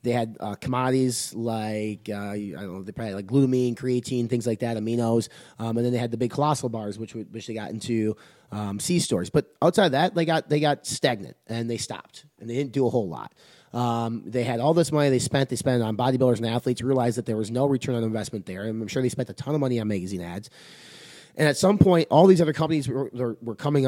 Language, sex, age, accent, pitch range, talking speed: English, male, 30-49, American, 115-140 Hz, 260 wpm